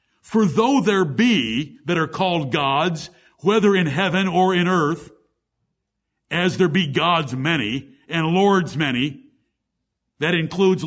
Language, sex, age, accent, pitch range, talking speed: English, male, 60-79, American, 165-220 Hz, 135 wpm